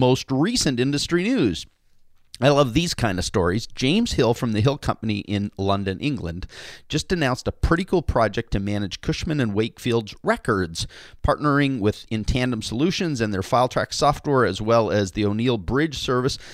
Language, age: English, 40-59